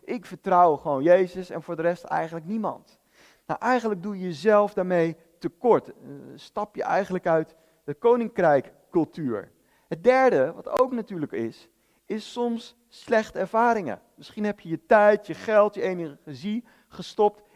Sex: male